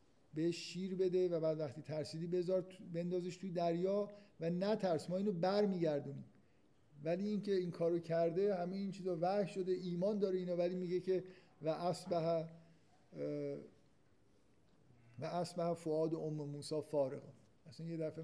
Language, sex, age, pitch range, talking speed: Persian, male, 50-69, 150-185 Hz, 150 wpm